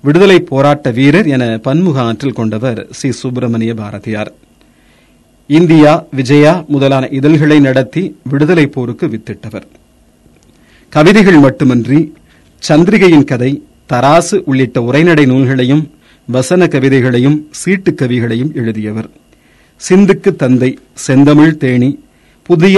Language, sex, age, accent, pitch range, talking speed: Tamil, male, 40-59, native, 115-155 Hz, 90 wpm